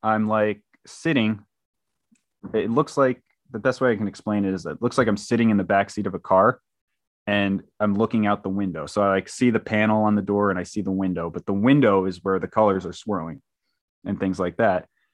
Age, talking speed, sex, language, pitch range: 30-49, 230 wpm, male, English, 100-115 Hz